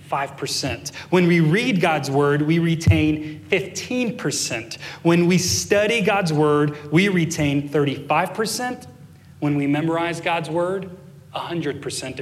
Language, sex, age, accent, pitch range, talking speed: English, male, 30-49, American, 145-180 Hz, 110 wpm